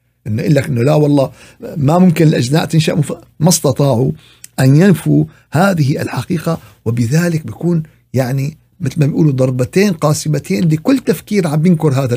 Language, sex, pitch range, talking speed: Arabic, male, 120-165 Hz, 135 wpm